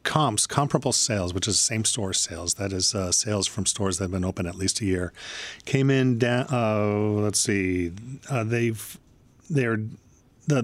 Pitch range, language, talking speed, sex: 95-125 Hz, English, 165 wpm, male